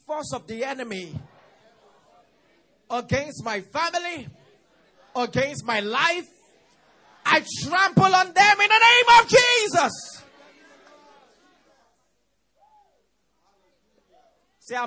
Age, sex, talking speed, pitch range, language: 30-49, male, 80 wpm, 260-425 Hz, English